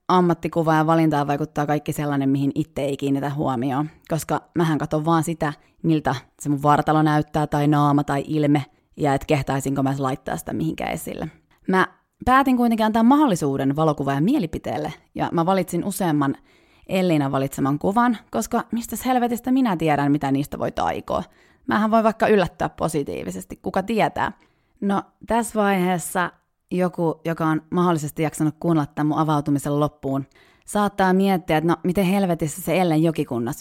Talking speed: 150 wpm